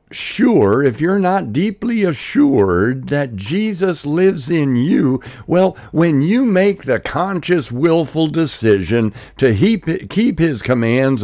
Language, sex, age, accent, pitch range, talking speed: English, male, 60-79, American, 105-175 Hz, 125 wpm